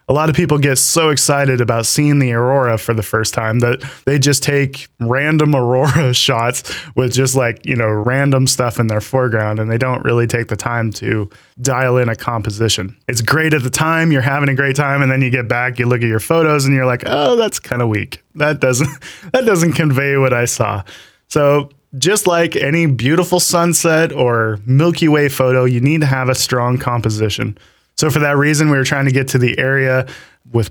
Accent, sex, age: American, male, 20-39